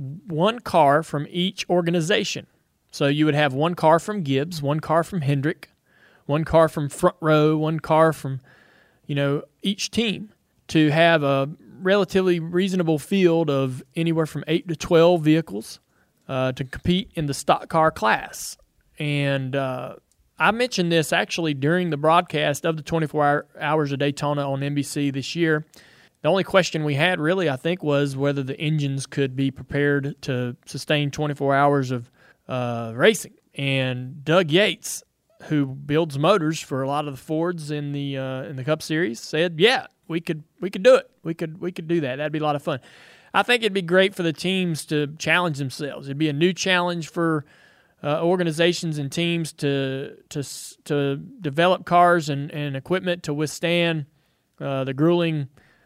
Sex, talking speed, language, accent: male, 175 wpm, English, American